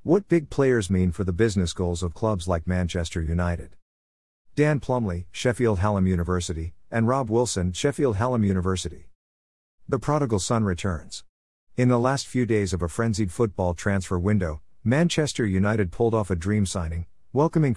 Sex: male